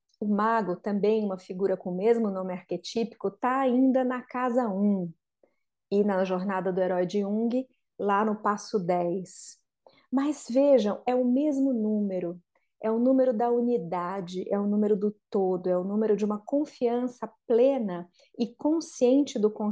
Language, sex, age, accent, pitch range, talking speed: Portuguese, female, 30-49, Brazilian, 195-245 Hz, 160 wpm